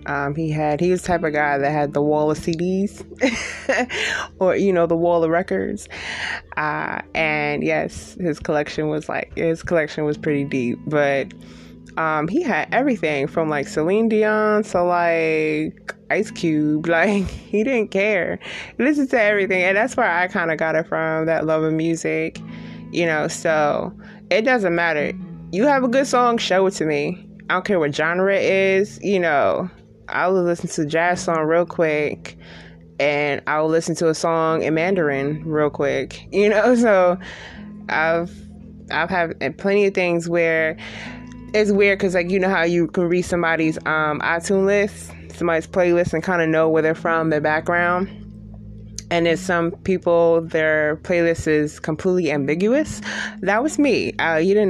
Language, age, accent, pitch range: English, 20-39, American, 150-190 Hz